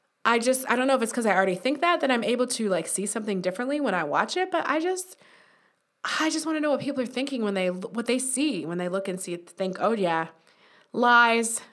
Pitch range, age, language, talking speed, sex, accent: 180-240 Hz, 20-39, English, 255 wpm, female, American